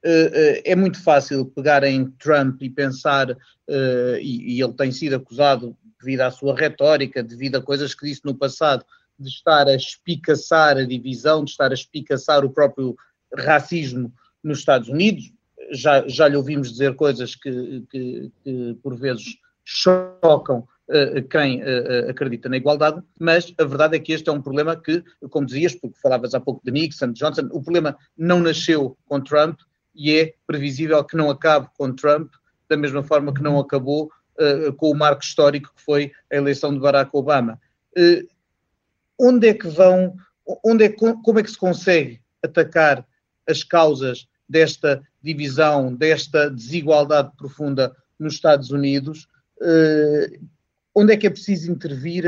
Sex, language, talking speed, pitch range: male, Portuguese, 160 wpm, 135-160 Hz